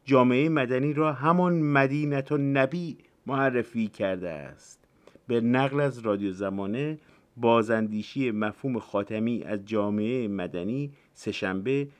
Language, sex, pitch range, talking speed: Persian, male, 115-160 Hz, 110 wpm